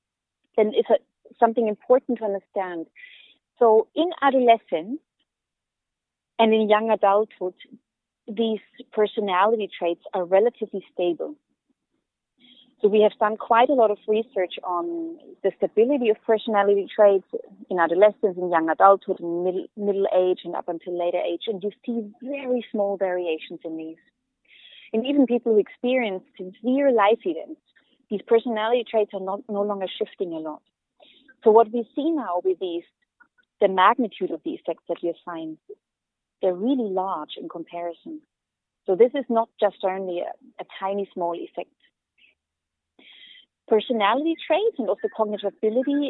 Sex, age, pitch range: female, 30-49, 185-255 Hz